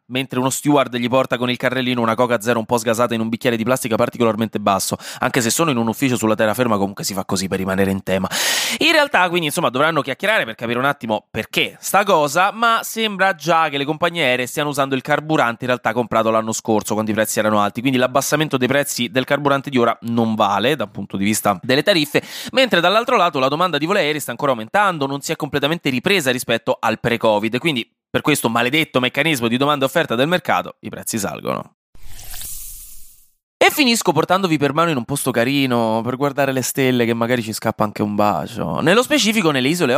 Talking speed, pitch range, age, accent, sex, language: 215 wpm, 115-160 Hz, 20-39, native, male, Italian